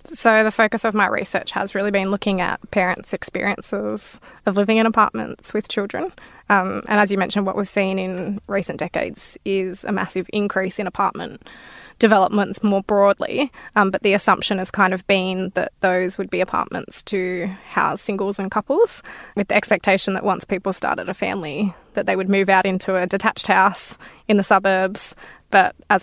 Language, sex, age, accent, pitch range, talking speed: English, female, 20-39, Australian, 190-210 Hz, 185 wpm